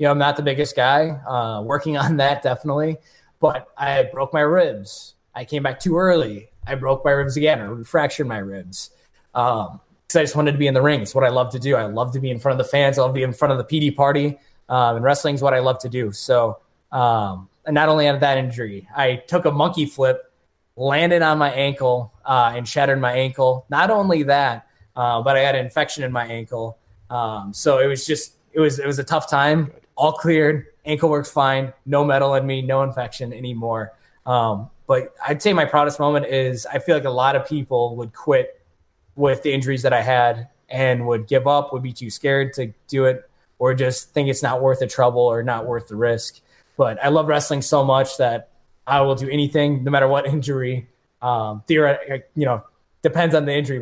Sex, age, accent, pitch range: male, 20-39, American, 125-145 Hz